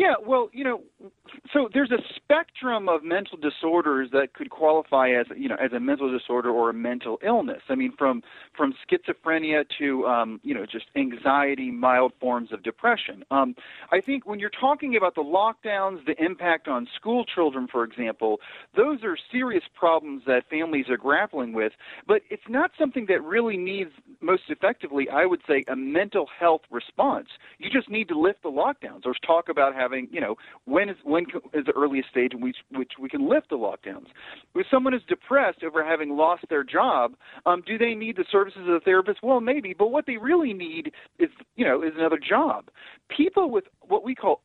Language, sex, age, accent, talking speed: English, male, 40-59, American, 195 wpm